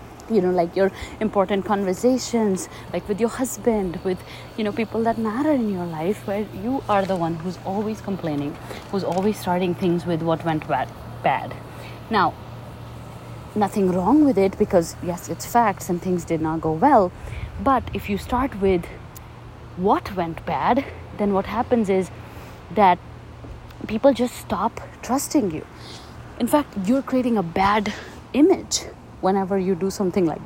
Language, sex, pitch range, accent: English, female, 170-220 Hz, Indian